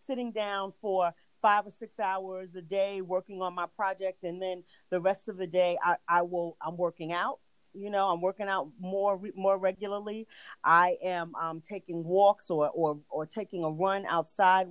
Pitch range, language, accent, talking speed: 175-210 Hz, English, American, 190 wpm